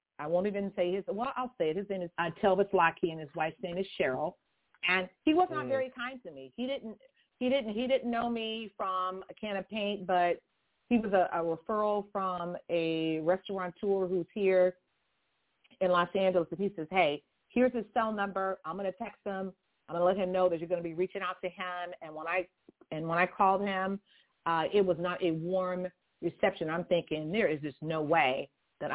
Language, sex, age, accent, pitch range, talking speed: English, female, 40-59, American, 165-195 Hz, 220 wpm